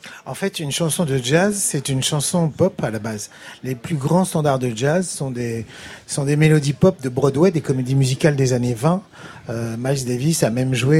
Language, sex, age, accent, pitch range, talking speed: French, male, 40-59, French, 130-160 Hz, 215 wpm